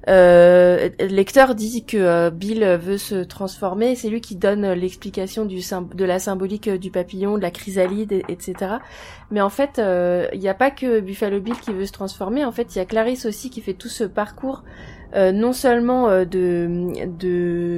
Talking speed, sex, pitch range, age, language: 195 wpm, female, 185-220 Hz, 20-39, French